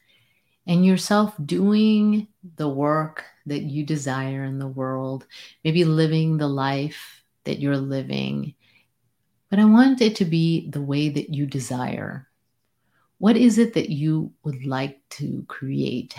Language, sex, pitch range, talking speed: English, female, 125-170 Hz, 140 wpm